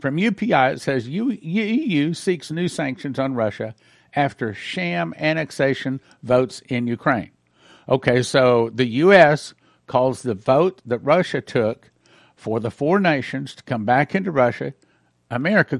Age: 50-69